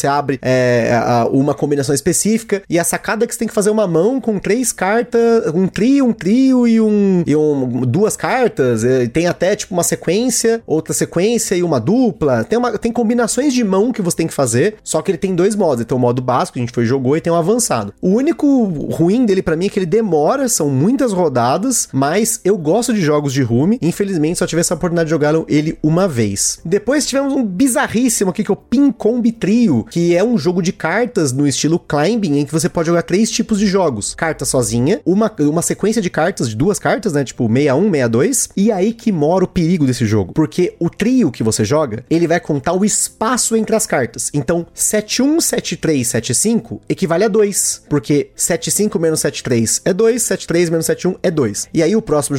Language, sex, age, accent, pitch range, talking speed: Portuguese, male, 30-49, Brazilian, 150-215 Hz, 215 wpm